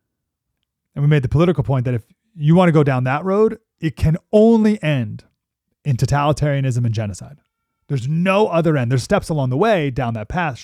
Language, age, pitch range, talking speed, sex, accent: English, 30-49, 115-155 Hz, 195 wpm, male, American